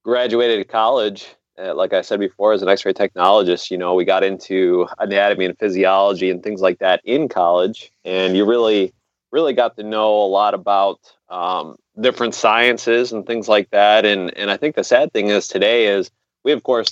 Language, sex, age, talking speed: English, male, 30-49, 195 wpm